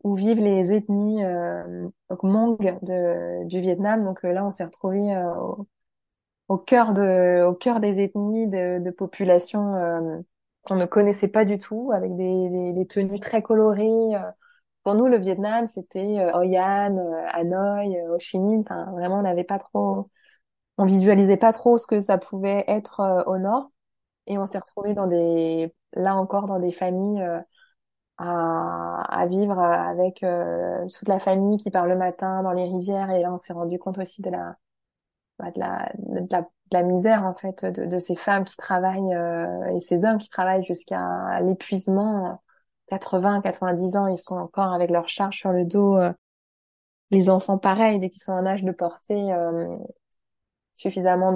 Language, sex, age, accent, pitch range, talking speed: French, female, 20-39, French, 175-200 Hz, 175 wpm